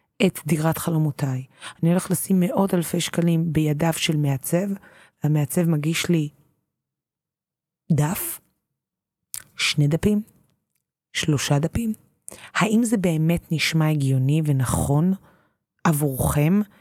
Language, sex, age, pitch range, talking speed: Hebrew, female, 30-49, 145-175 Hz, 95 wpm